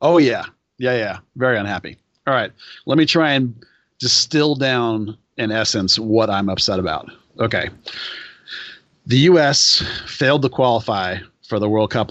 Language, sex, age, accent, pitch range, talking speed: English, male, 40-59, American, 105-125 Hz, 150 wpm